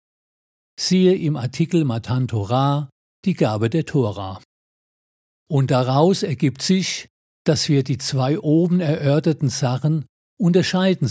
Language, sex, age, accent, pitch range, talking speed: German, male, 50-69, German, 130-165 Hz, 110 wpm